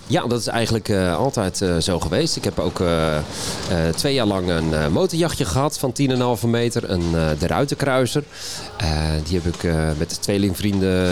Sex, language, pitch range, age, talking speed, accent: male, Dutch, 85-105 Hz, 40-59, 195 wpm, Dutch